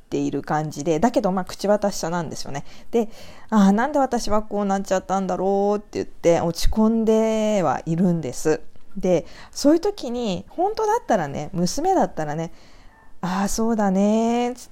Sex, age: female, 20-39